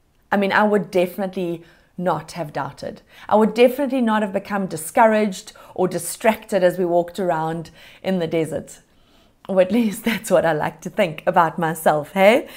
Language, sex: English, female